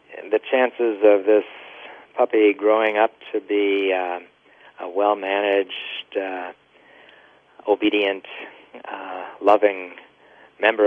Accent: American